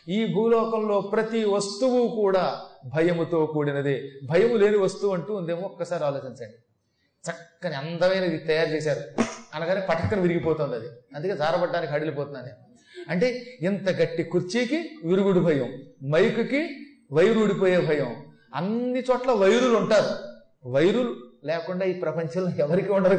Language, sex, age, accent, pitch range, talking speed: Telugu, male, 30-49, native, 160-230 Hz, 115 wpm